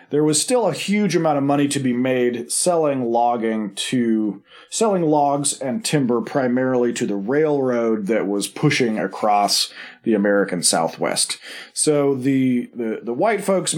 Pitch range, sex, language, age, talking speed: 125-170 Hz, male, English, 40-59, 150 wpm